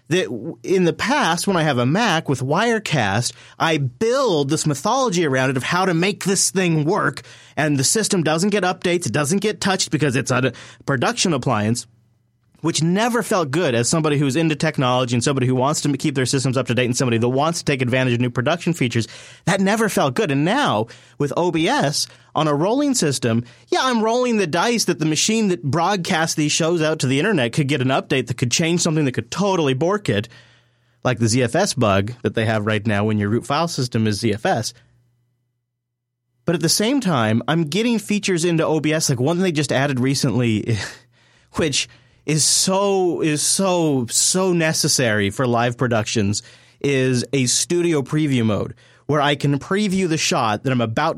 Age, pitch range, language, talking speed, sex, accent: 30-49, 120-170 Hz, English, 195 wpm, male, American